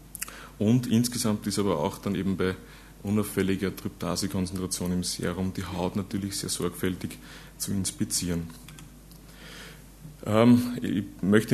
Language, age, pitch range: German, 30-49, 95-105 Hz